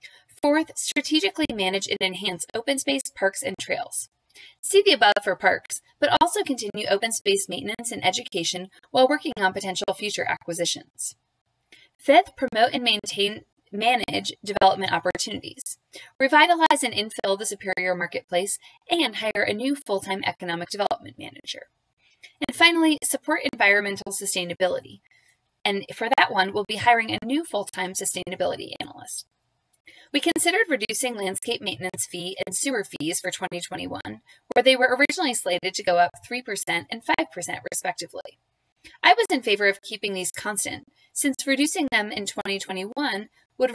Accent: American